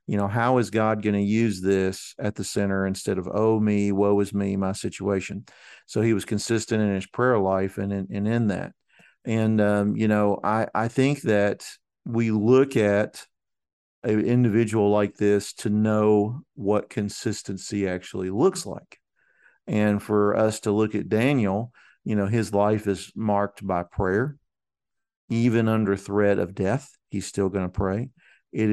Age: 50-69